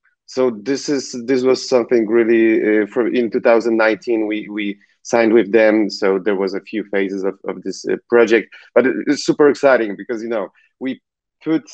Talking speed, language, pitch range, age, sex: 180 wpm, English, 105-130 Hz, 30-49, male